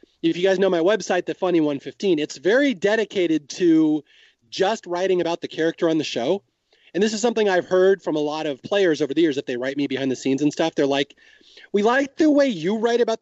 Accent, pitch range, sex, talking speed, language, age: American, 155-205 Hz, male, 240 wpm, English, 30-49